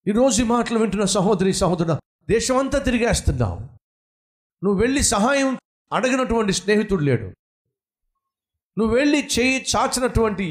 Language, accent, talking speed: Telugu, native, 110 wpm